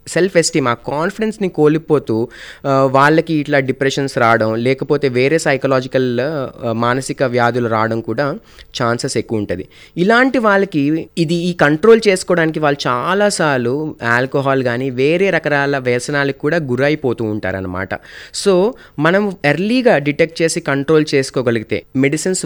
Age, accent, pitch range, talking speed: 30-49, native, 120-160 Hz, 115 wpm